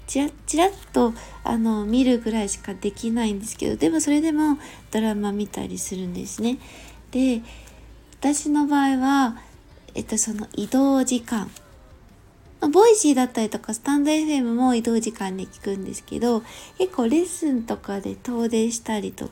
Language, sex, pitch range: Japanese, female, 210-280 Hz